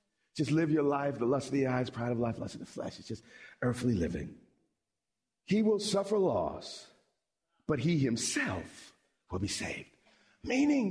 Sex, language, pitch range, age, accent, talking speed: male, English, 140-200 Hz, 40-59, American, 170 wpm